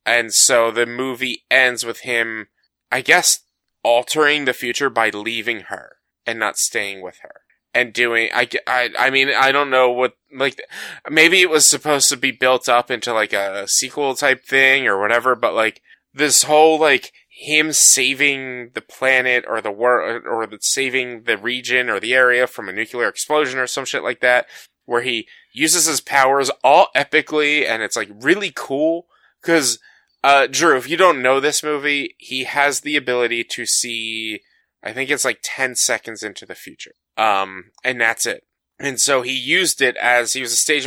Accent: American